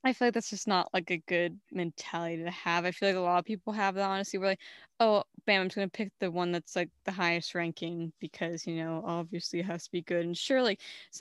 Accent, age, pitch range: American, 10-29, 175-200 Hz